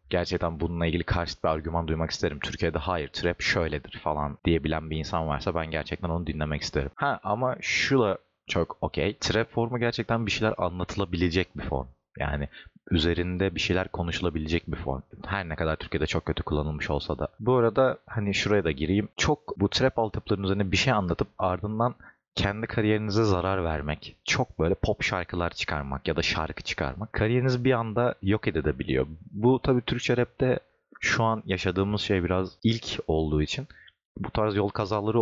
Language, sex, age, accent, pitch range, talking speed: Turkish, male, 30-49, native, 80-110 Hz, 170 wpm